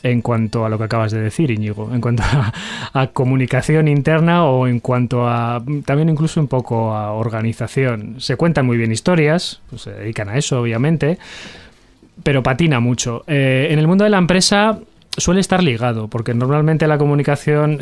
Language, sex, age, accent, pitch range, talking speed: Spanish, male, 20-39, Spanish, 120-150 Hz, 180 wpm